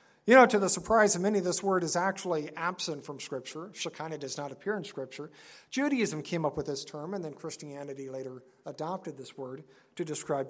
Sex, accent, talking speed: male, American, 200 wpm